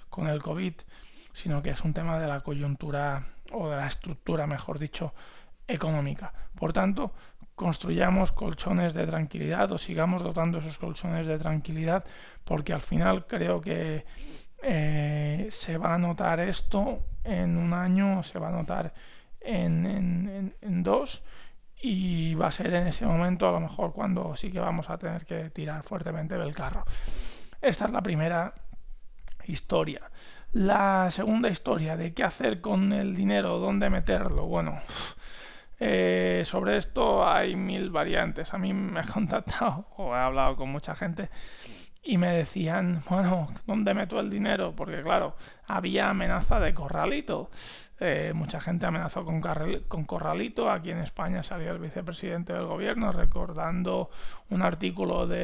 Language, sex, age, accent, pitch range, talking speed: Spanish, male, 20-39, Spanish, 155-190 Hz, 155 wpm